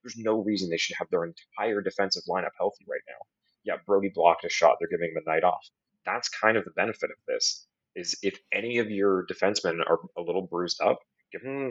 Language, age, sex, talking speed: English, 30-49, male, 230 wpm